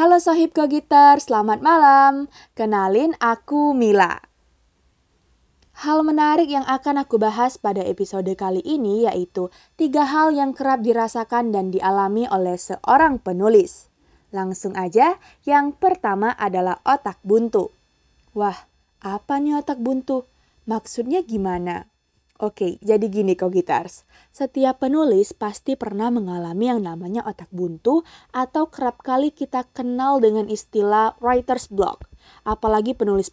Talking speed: 125 wpm